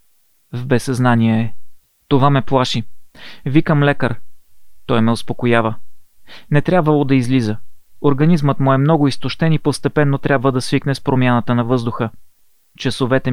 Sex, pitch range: male, 120-150 Hz